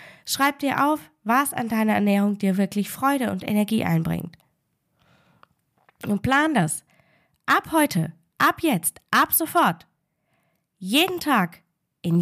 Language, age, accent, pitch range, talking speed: German, 10-29, German, 170-245 Hz, 125 wpm